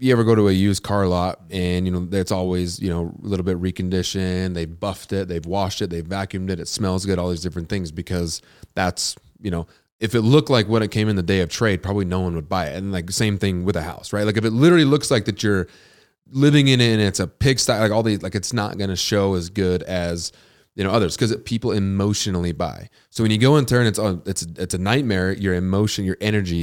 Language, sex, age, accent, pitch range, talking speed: English, male, 30-49, American, 85-100 Hz, 260 wpm